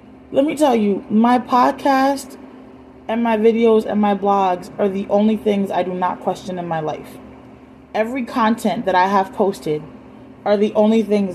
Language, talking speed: English, 175 wpm